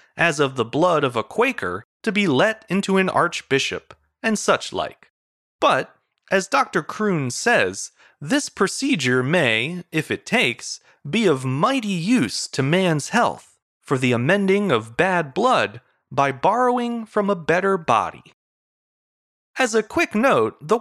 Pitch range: 145-225 Hz